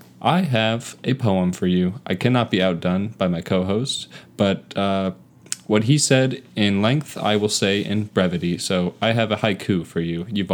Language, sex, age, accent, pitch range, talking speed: English, male, 20-39, American, 90-105 Hz, 190 wpm